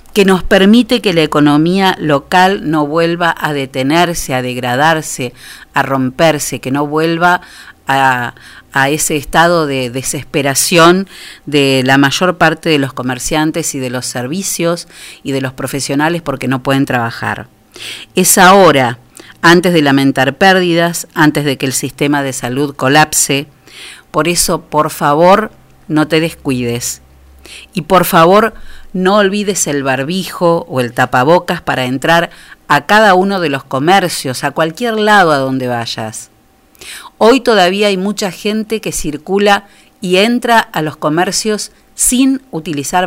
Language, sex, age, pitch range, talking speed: Spanish, female, 40-59, 135-185 Hz, 140 wpm